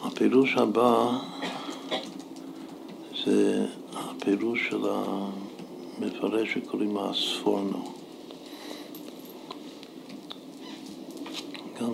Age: 60-79